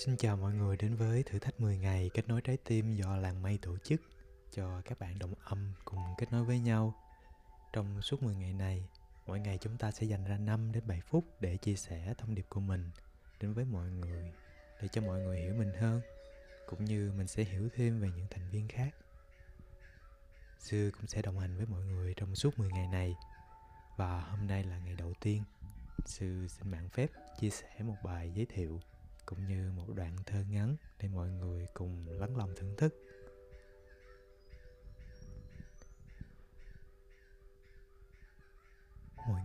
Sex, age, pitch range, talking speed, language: male, 20-39, 90-110 Hz, 180 wpm, Vietnamese